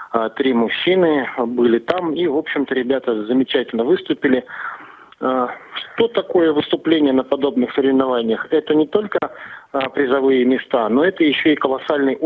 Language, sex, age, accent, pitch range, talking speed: Russian, male, 40-59, native, 125-155 Hz, 125 wpm